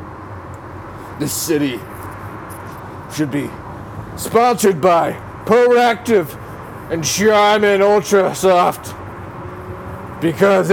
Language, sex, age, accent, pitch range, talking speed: English, male, 50-69, American, 110-180 Hz, 65 wpm